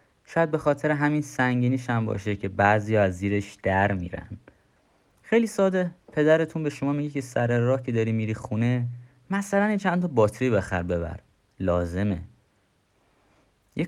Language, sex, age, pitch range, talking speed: Persian, male, 30-49, 95-130 Hz, 145 wpm